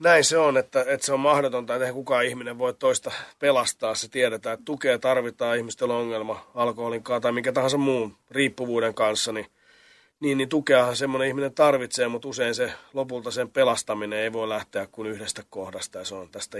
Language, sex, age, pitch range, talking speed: Finnish, male, 30-49, 115-155 Hz, 185 wpm